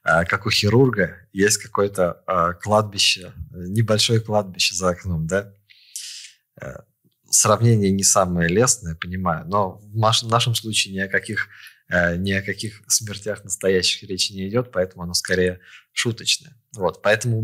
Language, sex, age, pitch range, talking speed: Russian, male, 20-39, 95-110 Hz, 125 wpm